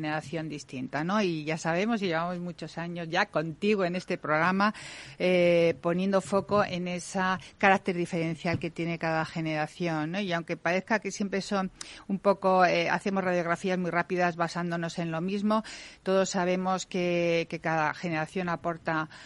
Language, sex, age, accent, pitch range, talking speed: Spanish, female, 50-69, Spanish, 160-185 Hz, 160 wpm